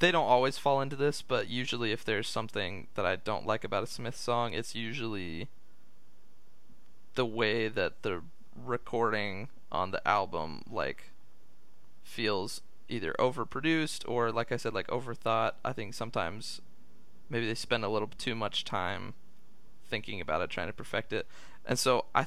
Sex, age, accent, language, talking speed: male, 20-39, American, English, 160 wpm